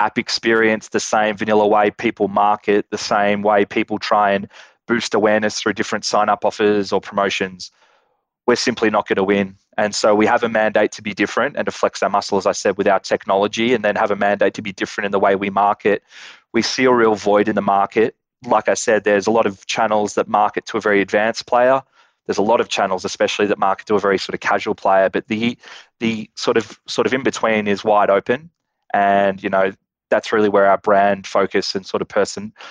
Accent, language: Australian, English